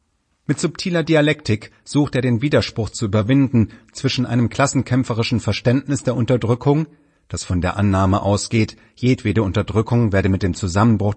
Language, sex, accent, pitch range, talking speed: German, male, German, 105-130 Hz, 140 wpm